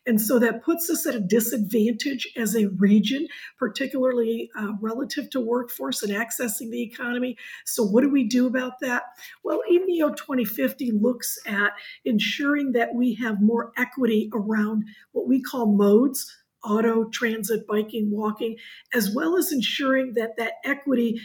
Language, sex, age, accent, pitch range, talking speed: English, female, 50-69, American, 220-260 Hz, 155 wpm